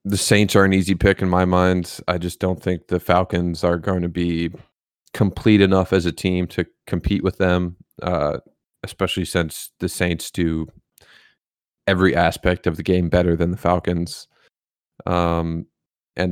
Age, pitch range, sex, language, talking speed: 30-49, 85-100 Hz, male, English, 165 wpm